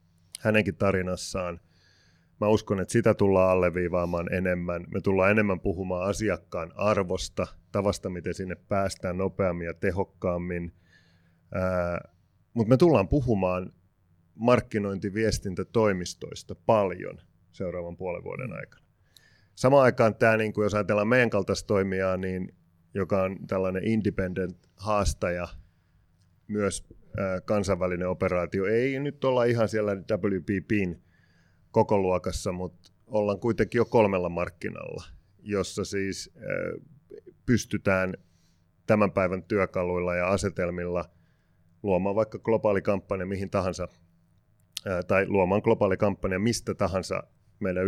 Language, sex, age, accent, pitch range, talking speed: Finnish, male, 30-49, native, 90-105 Hz, 100 wpm